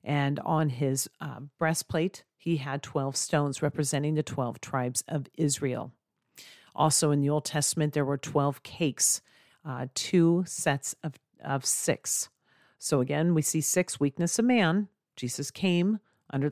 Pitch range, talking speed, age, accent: 135-160 Hz, 150 wpm, 40-59, American